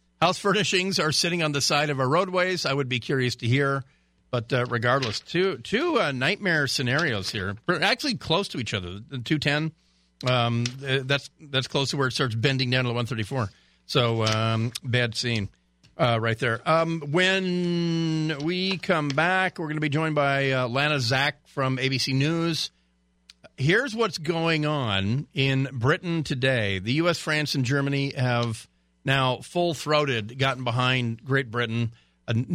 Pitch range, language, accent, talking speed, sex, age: 120-160 Hz, English, American, 170 wpm, male, 50-69